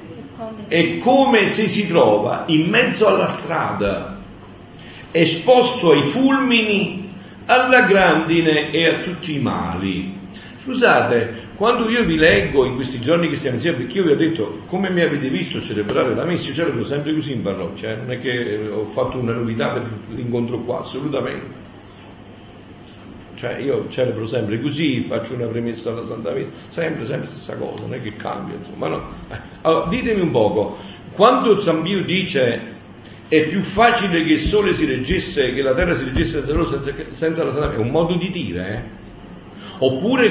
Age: 50-69